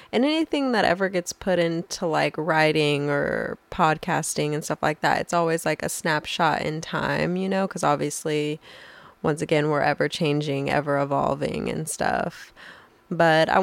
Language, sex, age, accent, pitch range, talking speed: English, female, 20-39, American, 155-185 Hz, 165 wpm